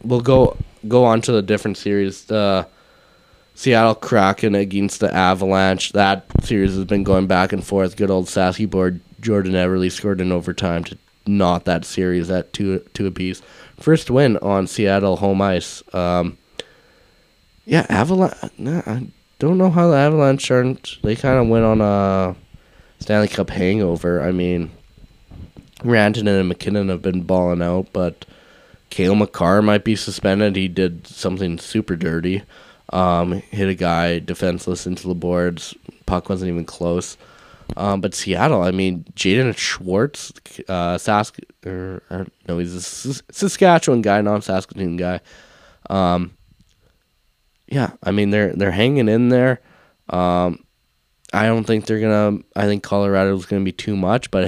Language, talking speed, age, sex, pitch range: English, 155 wpm, 20-39, male, 90-105 Hz